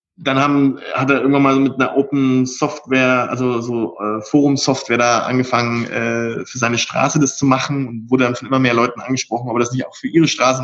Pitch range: 125-150 Hz